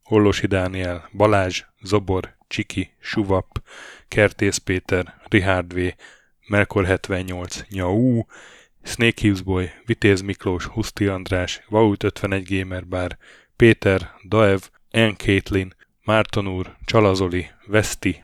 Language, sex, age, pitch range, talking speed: Hungarian, male, 10-29, 95-105 Hz, 100 wpm